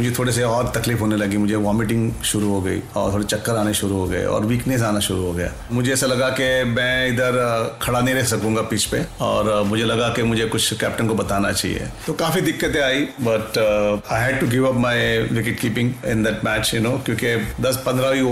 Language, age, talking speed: Hindi, 40-59, 140 wpm